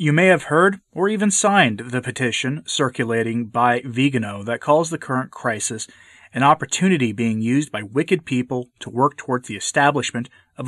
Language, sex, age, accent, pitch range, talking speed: English, male, 30-49, American, 120-150 Hz, 170 wpm